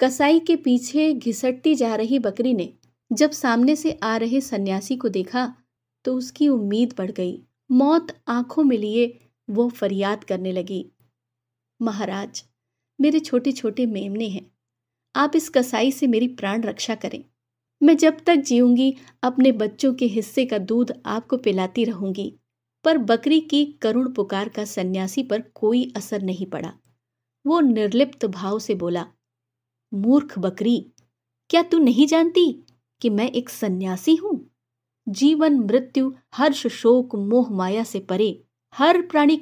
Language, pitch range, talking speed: Hindi, 190-275 Hz, 145 wpm